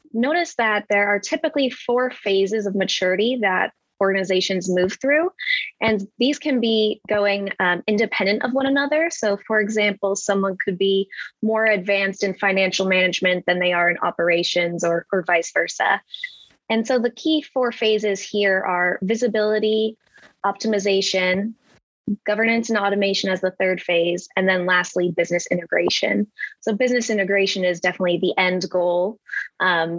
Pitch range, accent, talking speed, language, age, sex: 185-225 Hz, American, 150 wpm, English, 20-39, female